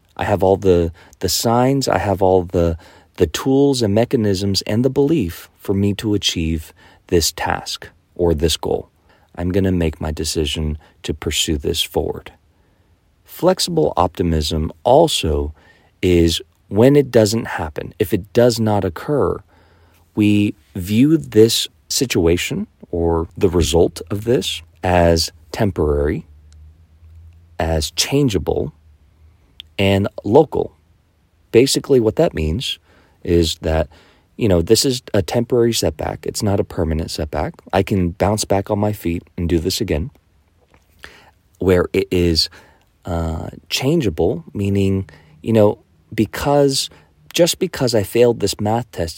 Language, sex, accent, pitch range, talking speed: English, male, American, 80-105 Hz, 135 wpm